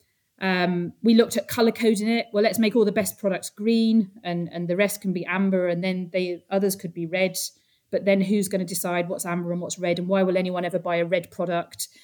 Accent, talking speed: British, 245 wpm